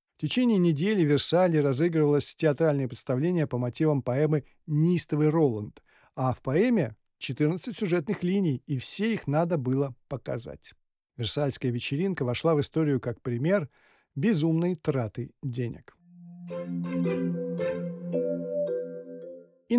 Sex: male